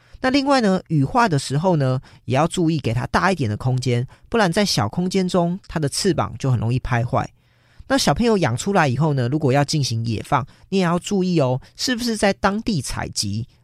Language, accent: Chinese, American